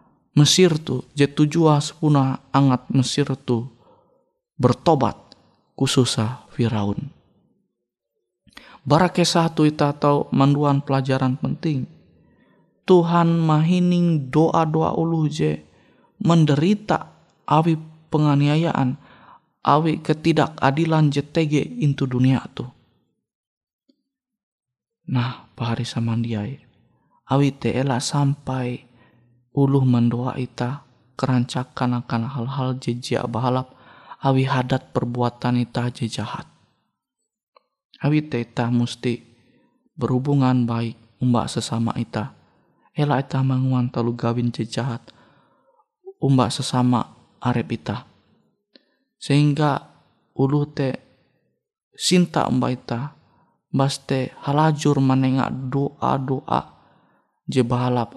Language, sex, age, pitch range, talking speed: Indonesian, male, 20-39, 120-155 Hz, 85 wpm